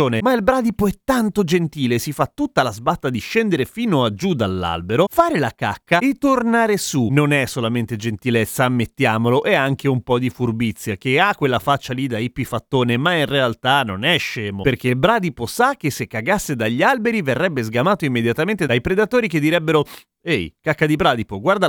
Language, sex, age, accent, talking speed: Italian, male, 30-49, native, 190 wpm